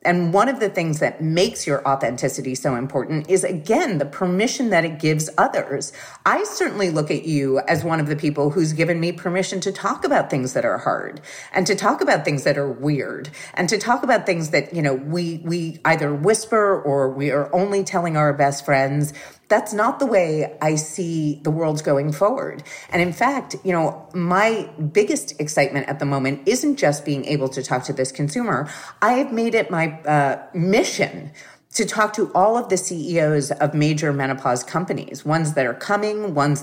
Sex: female